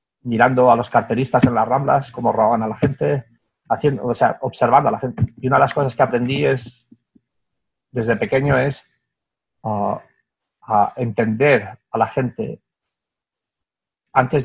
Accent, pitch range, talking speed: Spanish, 115-140 Hz, 155 wpm